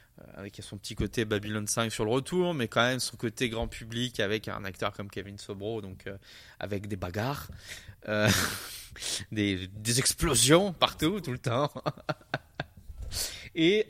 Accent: French